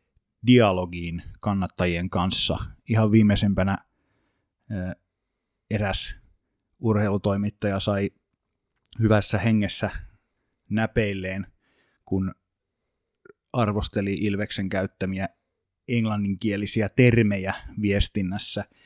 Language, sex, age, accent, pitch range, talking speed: Finnish, male, 30-49, native, 95-115 Hz, 55 wpm